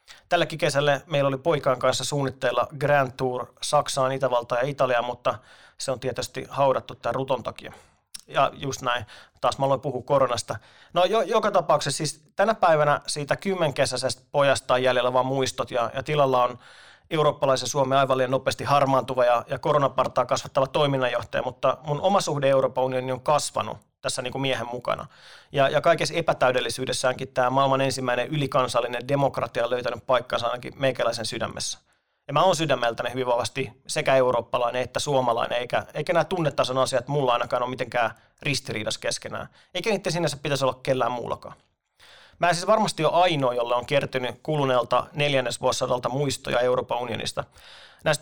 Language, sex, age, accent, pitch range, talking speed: Finnish, male, 30-49, native, 125-145 Hz, 155 wpm